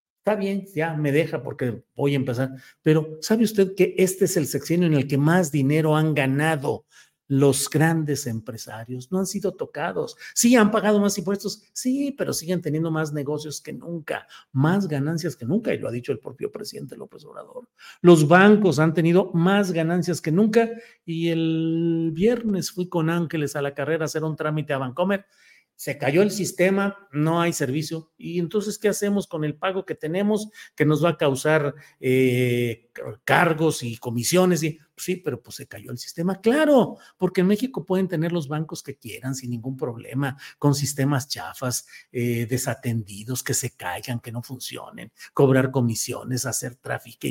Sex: male